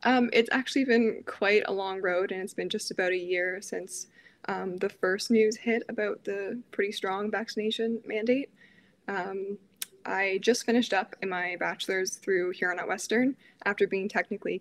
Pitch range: 185-225 Hz